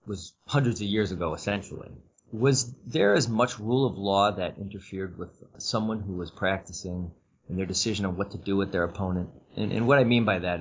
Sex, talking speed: male, 210 wpm